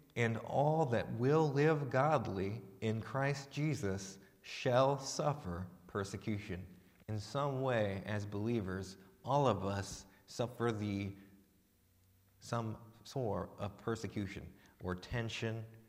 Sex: male